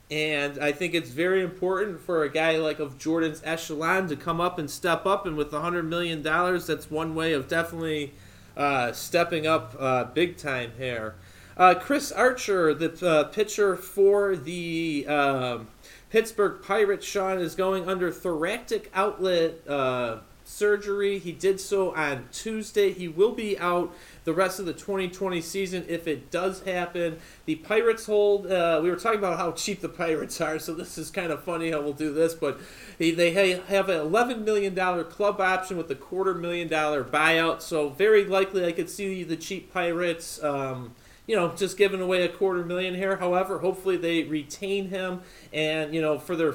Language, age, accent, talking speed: English, 30-49, American, 180 wpm